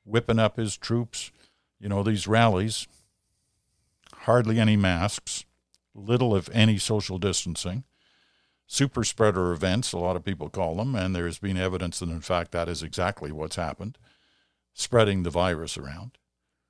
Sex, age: male, 50-69